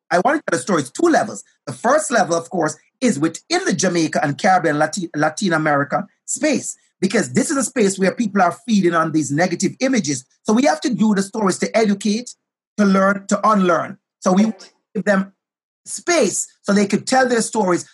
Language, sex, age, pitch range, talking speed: English, male, 30-49, 185-230 Hz, 200 wpm